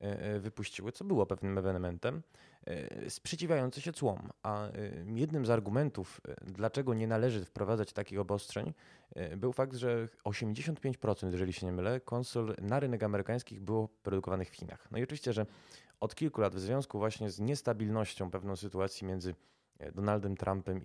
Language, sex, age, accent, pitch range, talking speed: Polish, male, 20-39, native, 95-120 Hz, 145 wpm